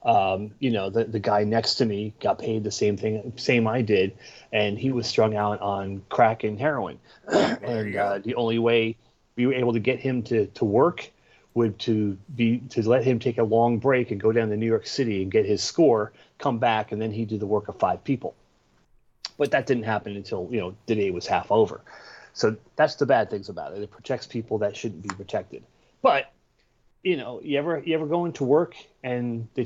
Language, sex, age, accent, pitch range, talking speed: English, male, 30-49, American, 105-130 Hz, 225 wpm